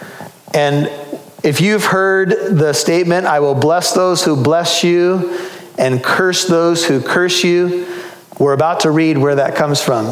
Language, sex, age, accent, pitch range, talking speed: English, male, 40-59, American, 145-185 Hz, 160 wpm